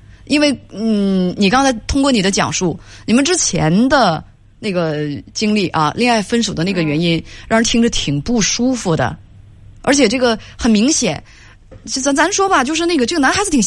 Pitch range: 180-275 Hz